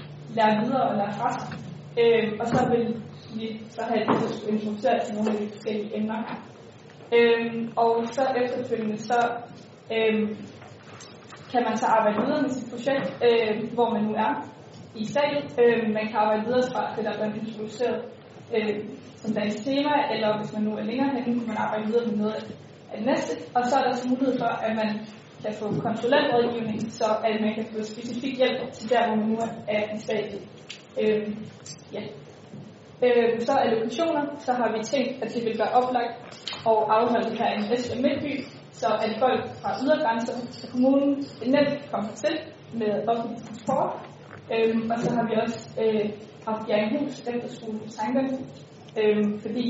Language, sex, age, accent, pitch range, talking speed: Danish, female, 20-39, native, 215-245 Hz, 180 wpm